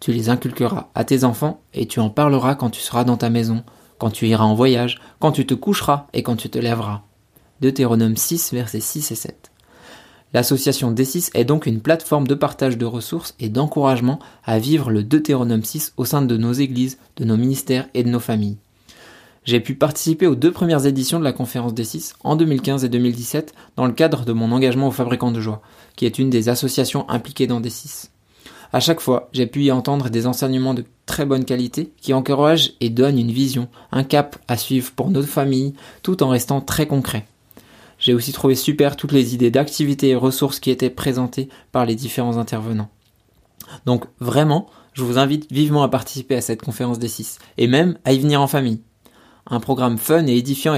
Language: French